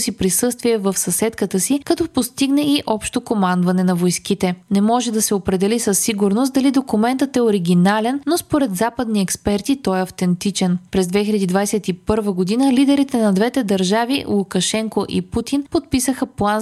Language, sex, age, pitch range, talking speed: Bulgarian, female, 20-39, 190-255 Hz, 150 wpm